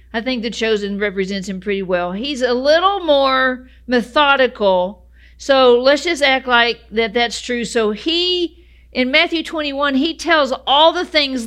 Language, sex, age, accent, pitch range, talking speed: English, female, 50-69, American, 215-285 Hz, 160 wpm